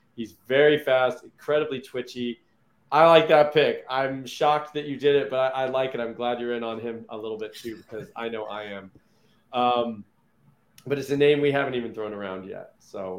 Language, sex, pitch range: English, male, 130-155 Hz